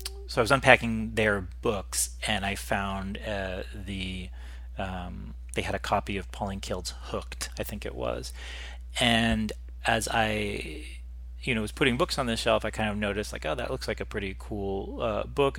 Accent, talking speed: American, 190 wpm